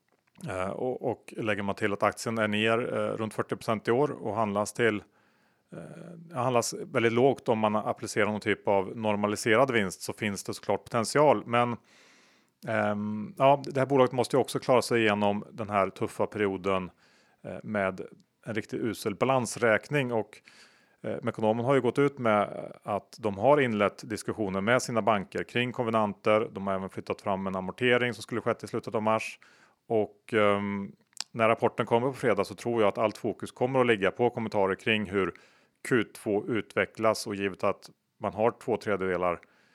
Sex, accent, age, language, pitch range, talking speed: male, Norwegian, 30-49, Swedish, 100-120 Hz, 180 wpm